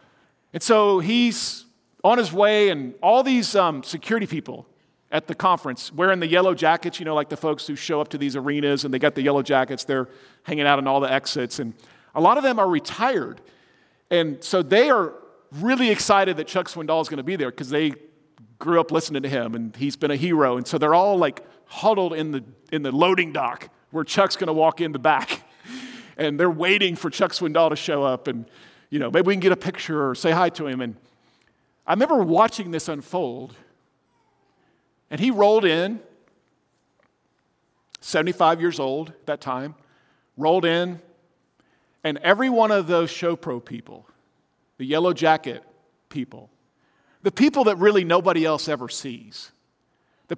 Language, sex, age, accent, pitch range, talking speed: English, male, 40-59, American, 145-185 Hz, 190 wpm